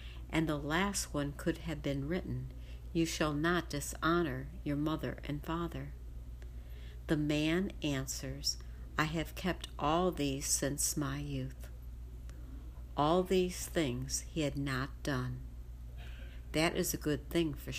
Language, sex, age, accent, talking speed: English, female, 60-79, American, 135 wpm